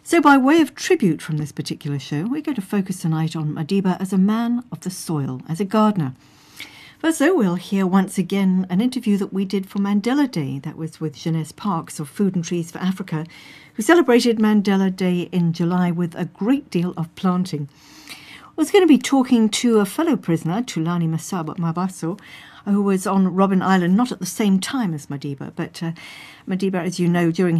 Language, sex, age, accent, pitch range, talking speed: English, female, 60-79, British, 160-210 Hz, 205 wpm